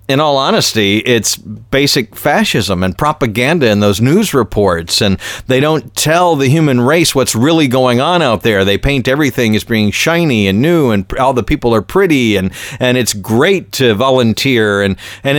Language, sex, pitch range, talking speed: English, male, 110-155 Hz, 185 wpm